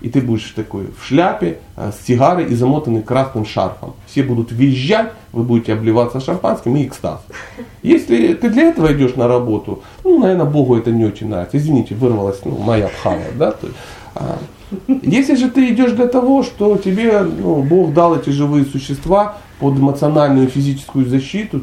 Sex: male